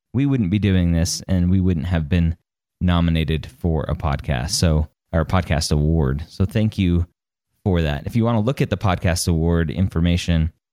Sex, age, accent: male, 20-39, American